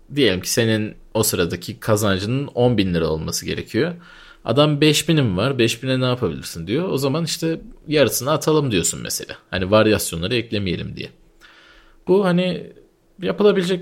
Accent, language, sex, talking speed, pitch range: native, Turkish, male, 140 wpm, 105-155 Hz